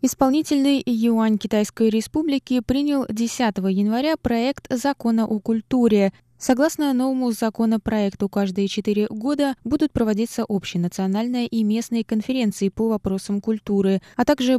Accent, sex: native, female